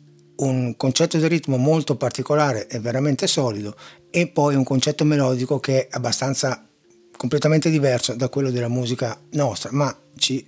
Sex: male